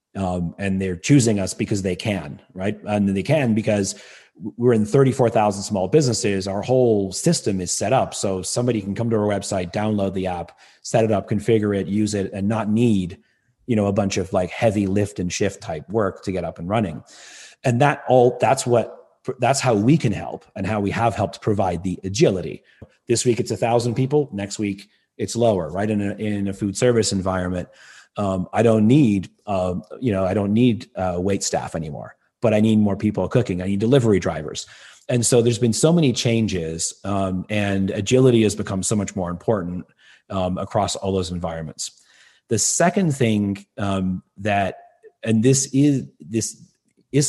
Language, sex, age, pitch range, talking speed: English, male, 30-49, 95-115 Hz, 190 wpm